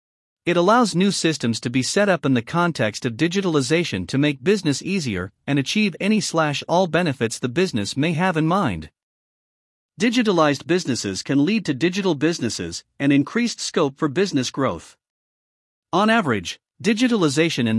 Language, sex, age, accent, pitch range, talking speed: English, male, 50-69, American, 130-190 Hz, 155 wpm